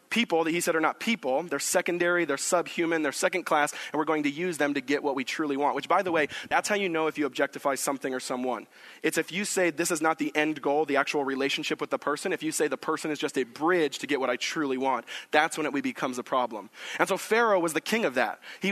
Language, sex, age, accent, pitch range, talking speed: English, male, 20-39, American, 145-175 Hz, 275 wpm